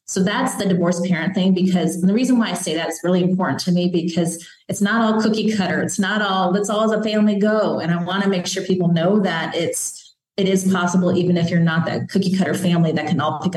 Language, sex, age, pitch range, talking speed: English, female, 30-49, 175-215 Hz, 250 wpm